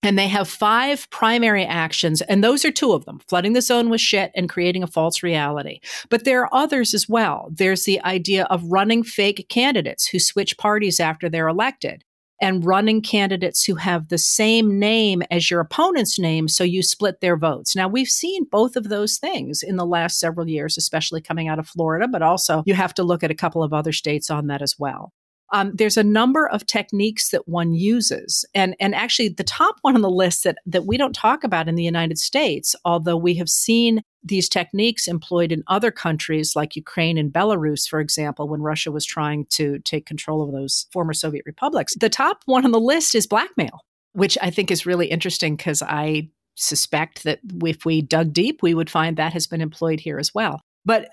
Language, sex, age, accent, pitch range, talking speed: English, female, 50-69, American, 160-220 Hz, 210 wpm